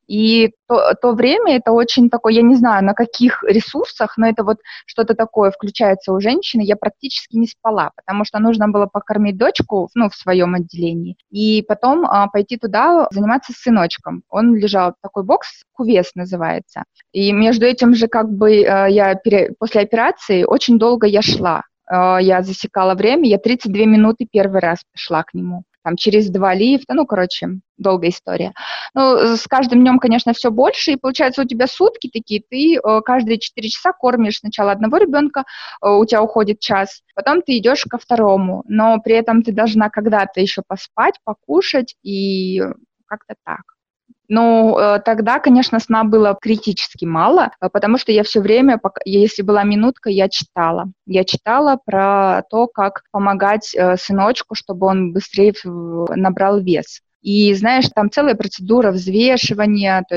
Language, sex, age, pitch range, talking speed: Russian, female, 20-39, 195-235 Hz, 160 wpm